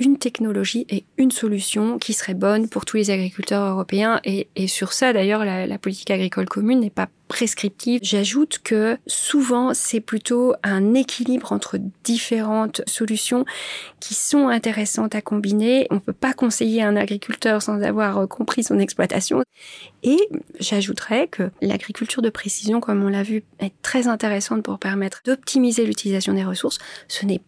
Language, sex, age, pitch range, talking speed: English, female, 30-49, 200-250 Hz, 160 wpm